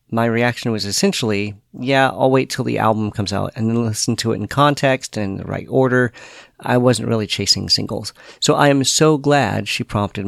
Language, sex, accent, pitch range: English, male, American, 105-130 Hz